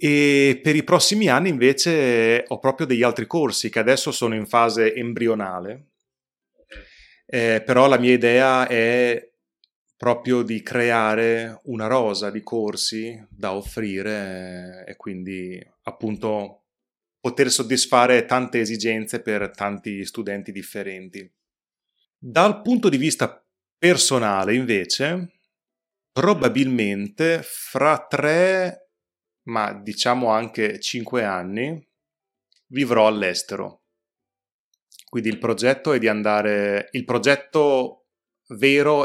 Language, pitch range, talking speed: Italian, 105-130 Hz, 105 wpm